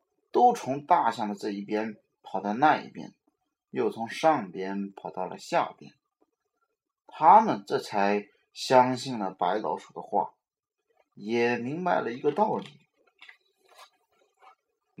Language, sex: Chinese, male